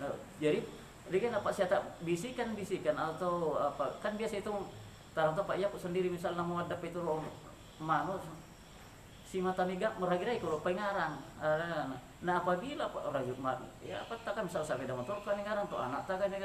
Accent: native